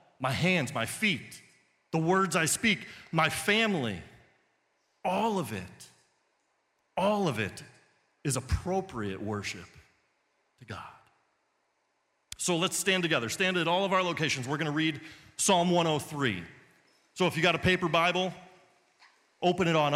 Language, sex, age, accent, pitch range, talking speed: English, male, 40-59, American, 145-195 Hz, 140 wpm